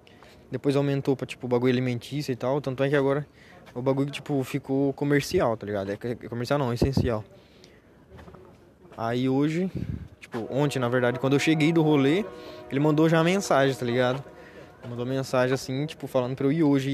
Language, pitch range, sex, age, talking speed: Portuguese, 125-155 Hz, male, 20-39, 185 wpm